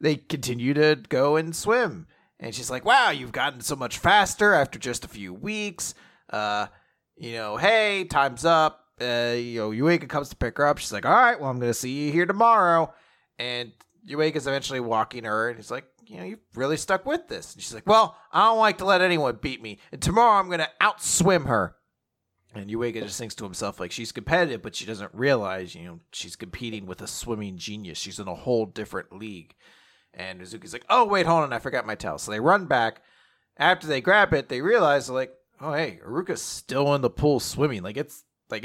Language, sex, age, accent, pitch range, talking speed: English, male, 30-49, American, 110-155 Hz, 225 wpm